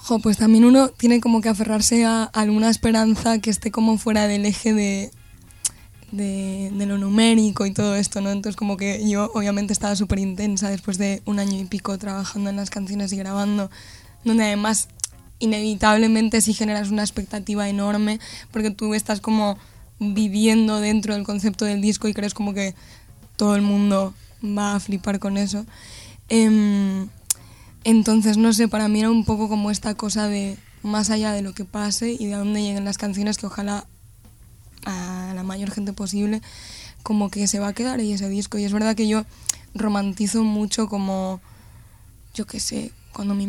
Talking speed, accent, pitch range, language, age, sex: 180 wpm, Spanish, 200-215 Hz, Spanish, 10-29, female